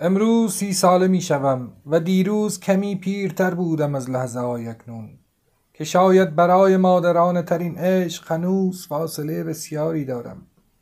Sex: male